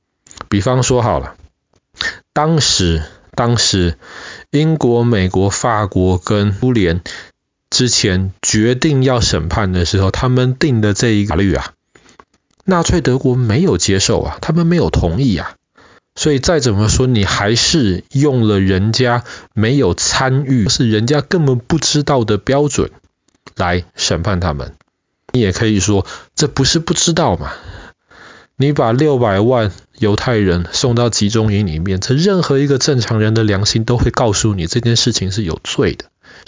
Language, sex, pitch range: Chinese, male, 100-135 Hz